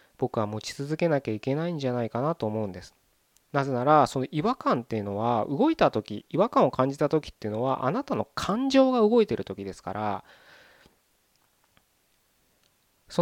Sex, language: male, Japanese